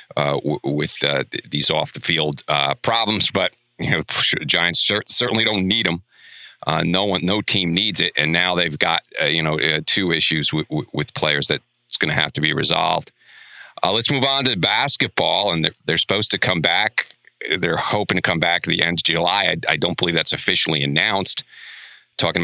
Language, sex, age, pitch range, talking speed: English, male, 40-59, 80-95 Hz, 210 wpm